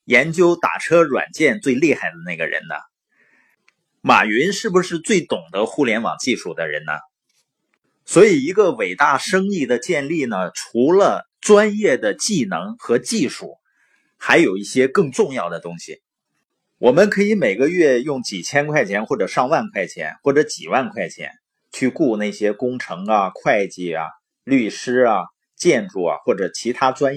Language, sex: Chinese, male